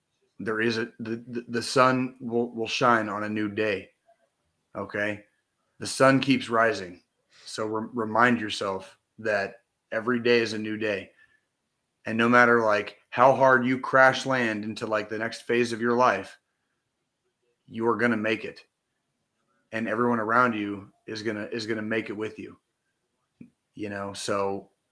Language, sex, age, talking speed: English, male, 30-49, 155 wpm